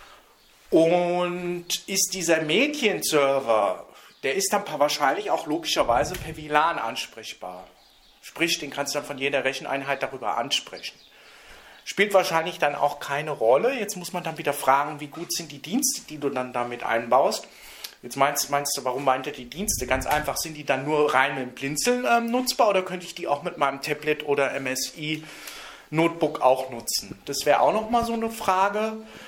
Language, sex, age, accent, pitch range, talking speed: German, male, 40-59, German, 140-190 Hz, 180 wpm